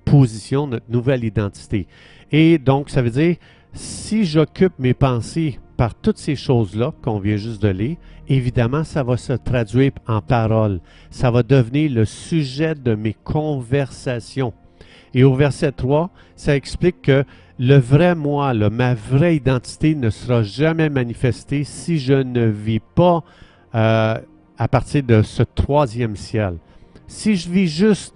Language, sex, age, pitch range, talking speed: French, male, 50-69, 110-145 Hz, 150 wpm